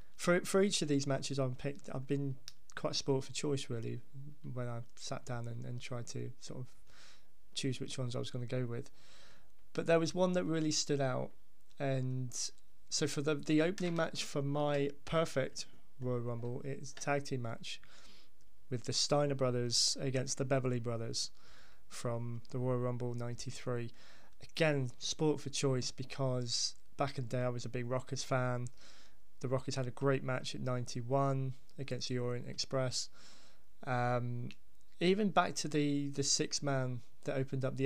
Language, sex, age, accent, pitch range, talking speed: English, male, 20-39, British, 120-140 Hz, 175 wpm